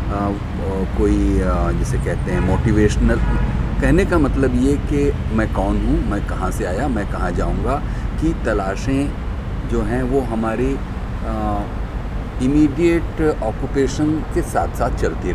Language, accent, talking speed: Hindi, native, 140 wpm